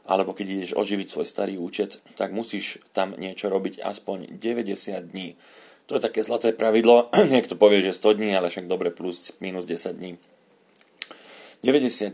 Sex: male